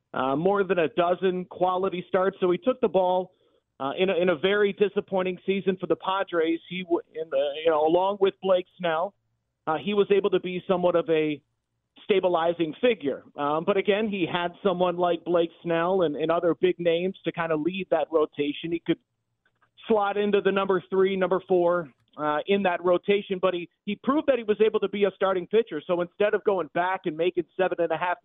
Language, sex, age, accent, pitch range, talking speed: English, male, 40-59, American, 165-200 Hz, 210 wpm